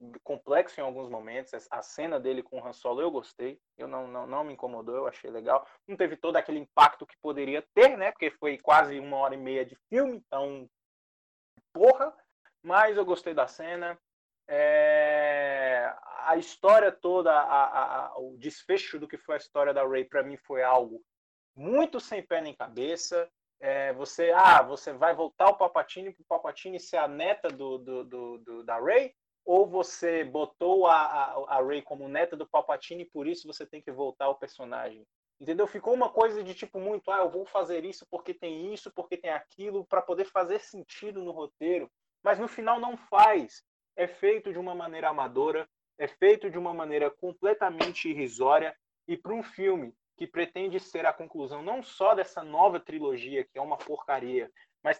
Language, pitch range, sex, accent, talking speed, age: Portuguese, 140-205 Hz, male, Brazilian, 190 wpm, 20-39